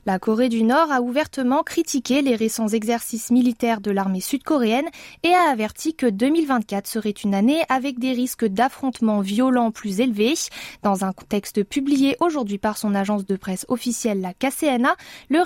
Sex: female